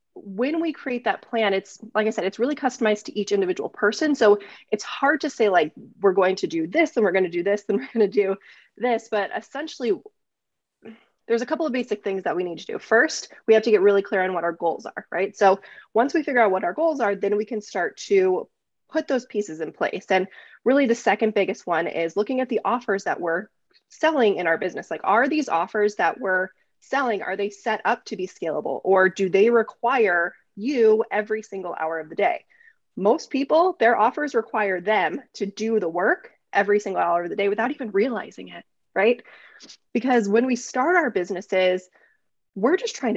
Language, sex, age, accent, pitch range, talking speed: English, female, 20-39, American, 200-260 Hz, 215 wpm